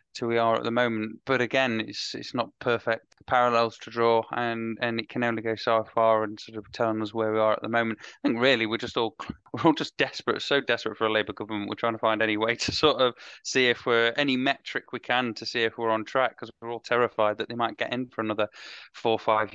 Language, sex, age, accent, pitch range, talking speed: English, male, 20-39, British, 110-125 Hz, 265 wpm